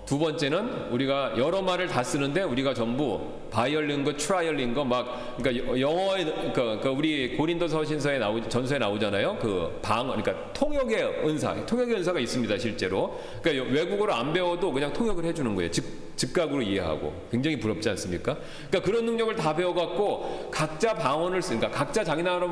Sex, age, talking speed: male, 40-59, 150 wpm